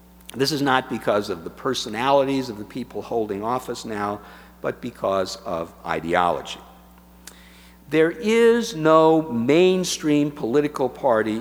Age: 50-69